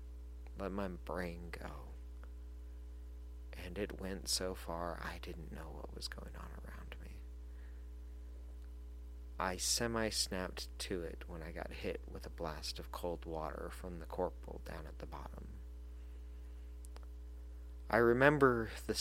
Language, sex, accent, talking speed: English, male, American, 135 wpm